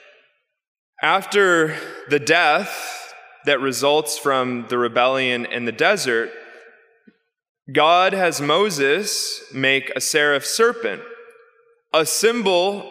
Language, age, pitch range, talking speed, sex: English, 20-39, 130-195 Hz, 95 wpm, male